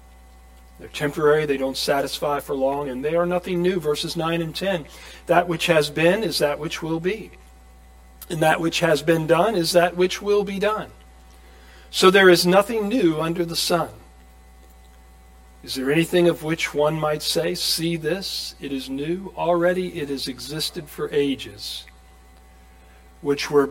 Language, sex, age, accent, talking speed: English, male, 40-59, American, 165 wpm